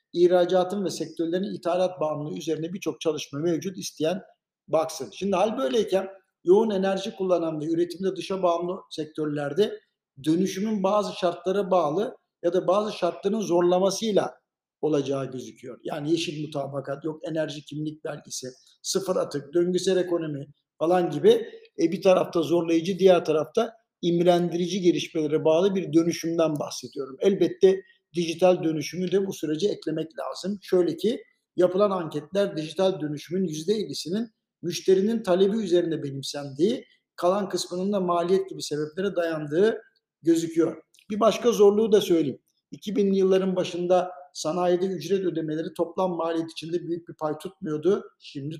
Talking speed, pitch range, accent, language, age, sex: 130 wpm, 160-190 Hz, native, Turkish, 60-79, male